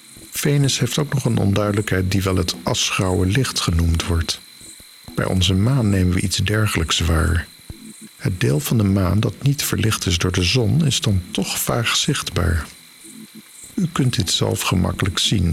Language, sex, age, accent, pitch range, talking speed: Dutch, male, 50-69, Dutch, 90-110 Hz, 170 wpm